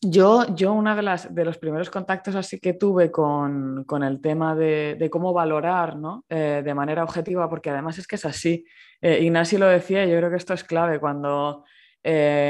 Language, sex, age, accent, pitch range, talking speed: Spanish, female, 20-39, Spanish, 150-180 Hz, 200 wpm